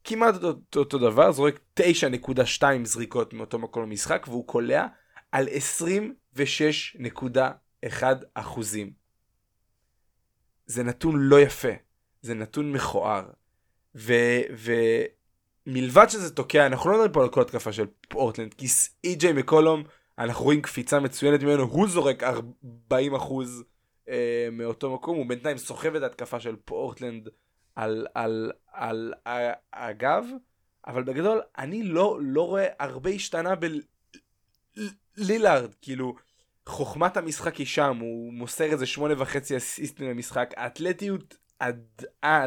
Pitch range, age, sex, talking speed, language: 125-165 Hz, 20-39, male, 115 wpm, Hebrew